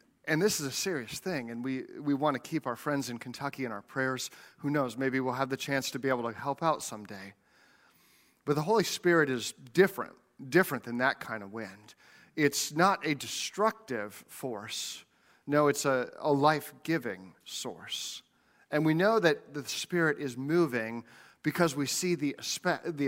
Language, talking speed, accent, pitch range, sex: English, 180 wpm, American, 130-170 Hz, male